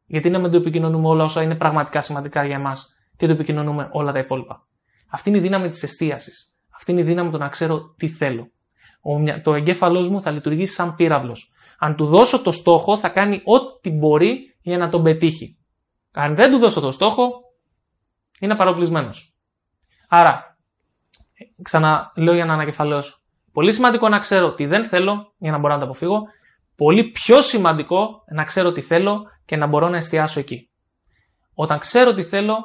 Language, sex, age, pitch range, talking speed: Greek, male, 20-39, 150-195 Hz, 175 wpm